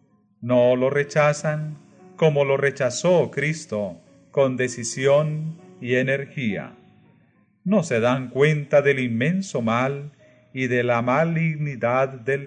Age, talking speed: 40-59, 110 wpm